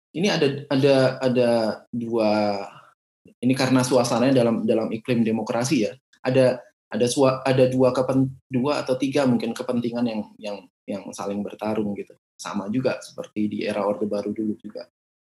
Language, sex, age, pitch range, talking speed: Indonesian, male, 20-39, 105-130 Hz, 155 wpm